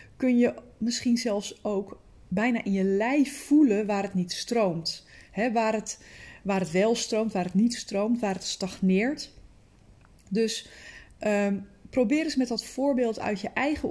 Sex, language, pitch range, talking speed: female, Dutch, 180-230 Hz, 155 wpm